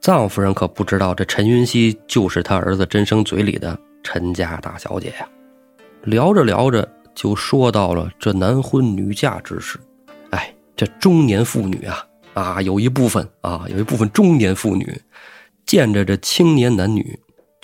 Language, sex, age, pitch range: Chinese, male, 30-49, 100-135 Hz